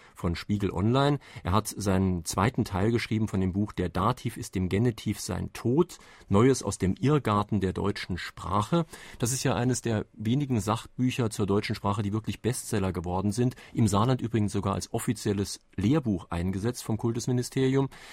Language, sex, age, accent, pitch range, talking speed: German, male, 40-59, German, 100-120 Hz, 170 wpm